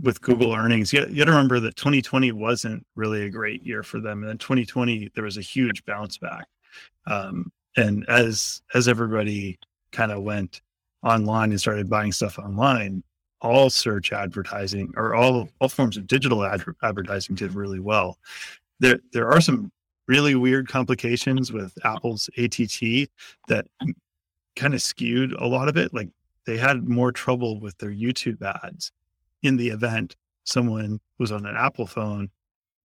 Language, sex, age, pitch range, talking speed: English, male, 30-49, 105-125 Hz, 160 wpm